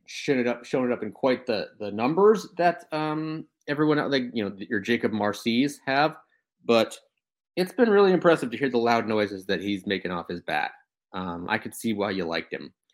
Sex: male